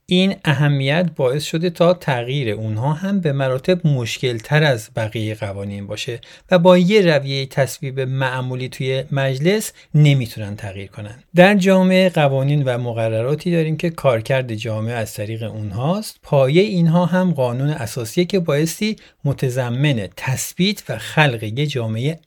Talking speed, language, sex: 140 wpm, Persian, male